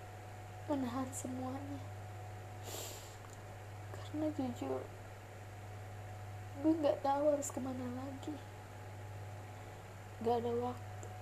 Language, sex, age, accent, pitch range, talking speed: Indonesian, female, 10-29, native, 105-110 Hz, 70 wpm